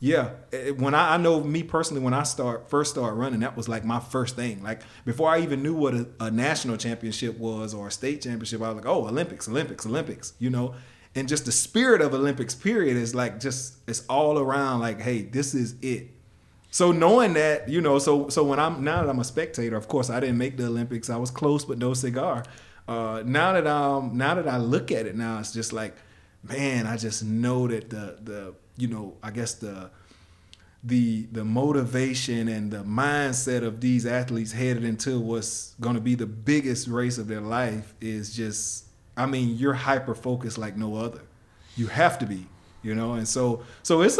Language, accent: English, American